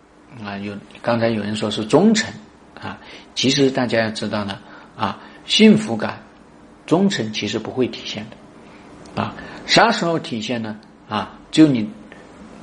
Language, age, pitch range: Chinese, 50-69, 110-160 Hz